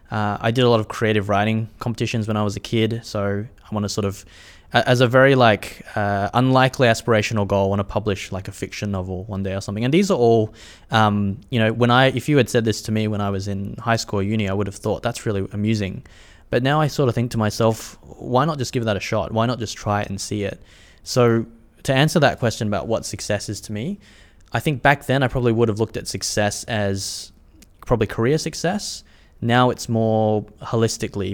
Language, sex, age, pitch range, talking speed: English, male, 20-39, 100-115 Hz, 235 wpm